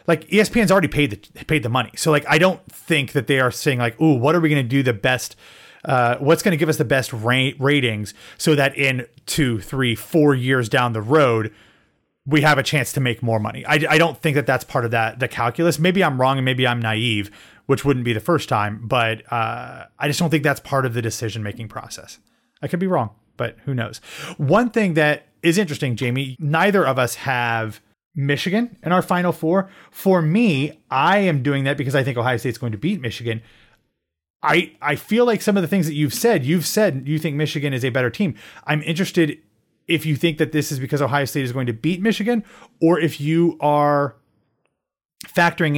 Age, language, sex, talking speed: 30-49, English, male, 220 wpm